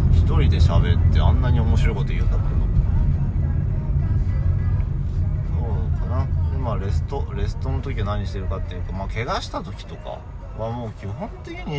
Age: 40-59